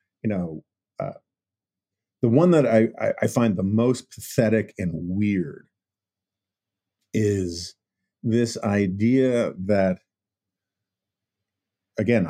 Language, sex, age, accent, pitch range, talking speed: English, male, 50-69, American, 100-120 Hz, 95 wpm